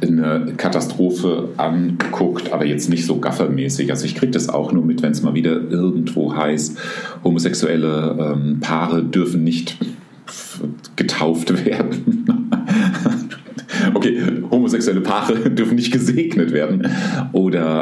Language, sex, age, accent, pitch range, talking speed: German, male, 40-59, German, 75-85 Hz, 120 wpm